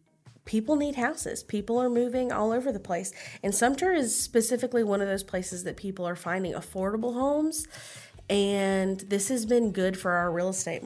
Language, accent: English, American